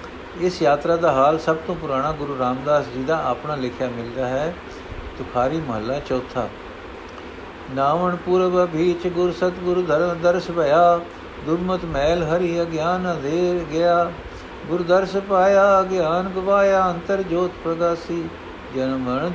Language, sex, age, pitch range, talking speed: Punjabi, male, 60-79, 160-185 Hz, 125 wpm